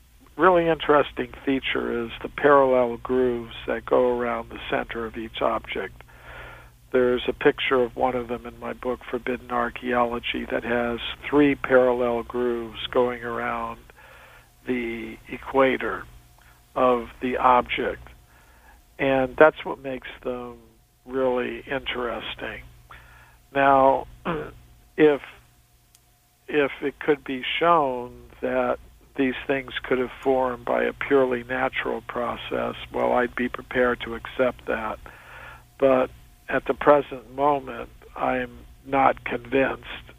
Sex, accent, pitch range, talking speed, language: male, American, 115-135 Hz, 120 wpm, English